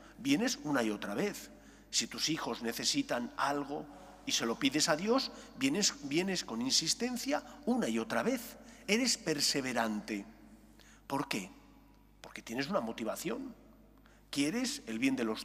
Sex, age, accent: male, 40-59, Spanish